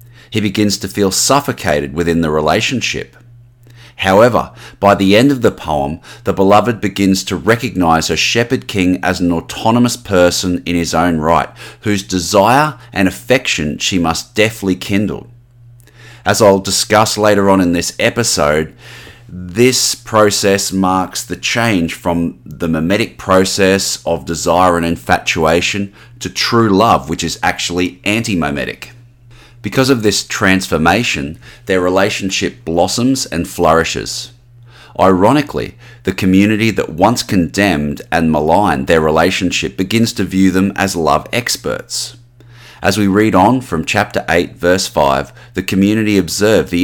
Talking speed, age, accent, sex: 135 wpm, 30-49, Australian, male